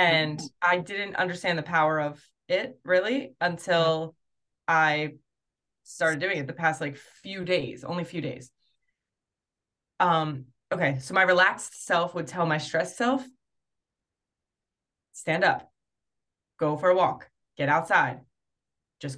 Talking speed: 130 wpm